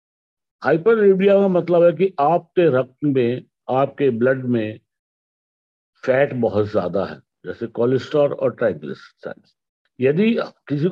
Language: English